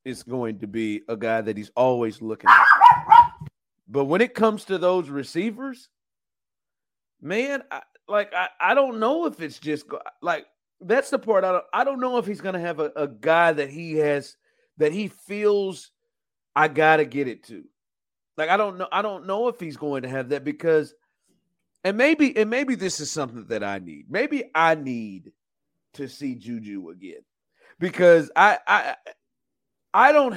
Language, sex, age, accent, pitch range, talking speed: English, male, 40-59, American, 130-185 Hz, 185 wpm